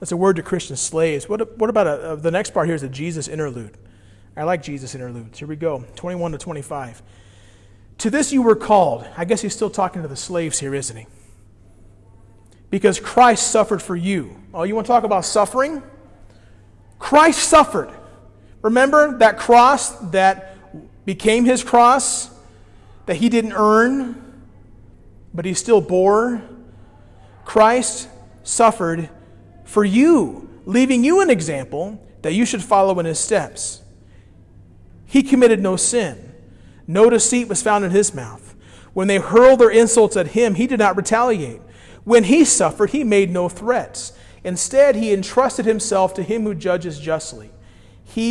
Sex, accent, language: male, American, English